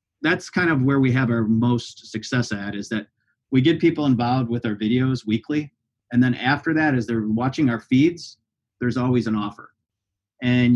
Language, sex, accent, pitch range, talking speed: English, male, American, 110-130 Hz, 190 wpm